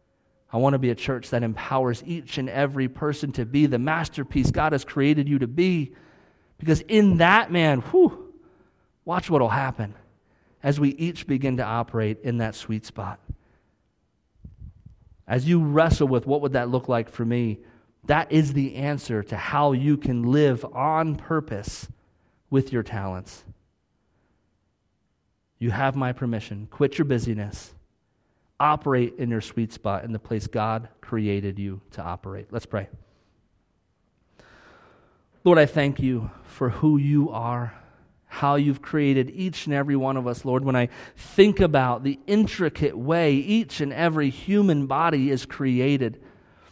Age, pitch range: 30-49, 110-150 Hz